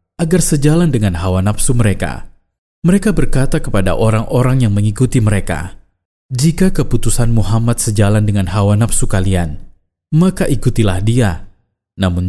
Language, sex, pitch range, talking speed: Indonesian, male, 100-130 Hz, 120 wpm